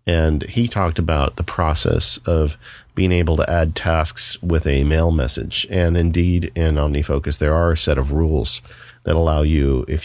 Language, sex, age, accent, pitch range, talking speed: English, male, 40-59, American, 75-90 Hz, 180 wpm